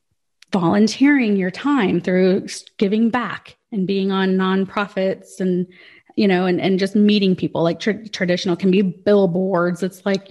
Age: 30-49